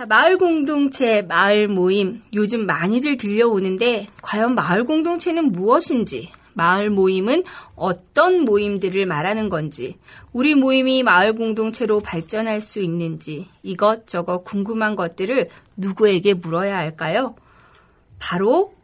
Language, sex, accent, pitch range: Korean, female, native, 190-275 Hz